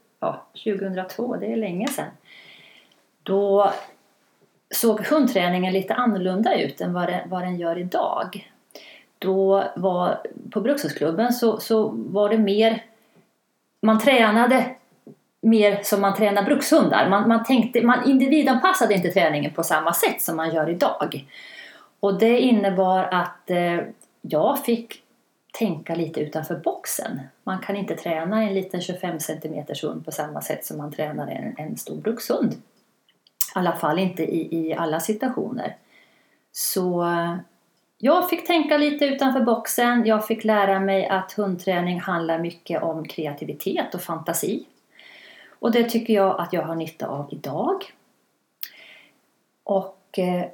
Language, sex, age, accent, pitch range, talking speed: Swedish, female, 30-49, native, 175-225 Hz, 135 wpm